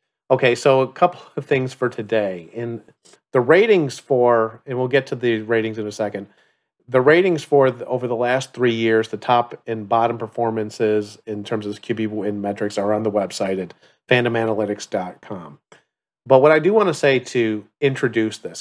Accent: American